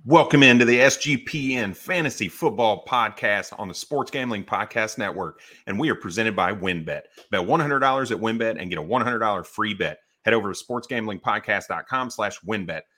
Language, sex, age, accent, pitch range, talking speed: English, male, 30-49, American, 110-140 Hz, 160 wpm